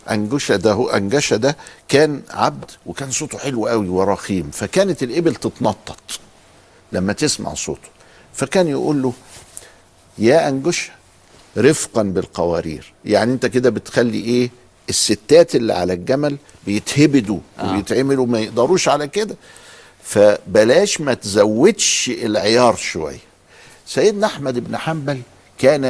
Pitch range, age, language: 100-145 Hz, 50-69, Arabic